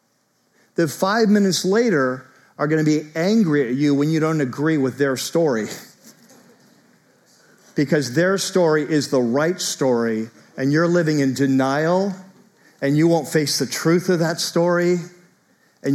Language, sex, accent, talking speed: English, male, American, 145 wpm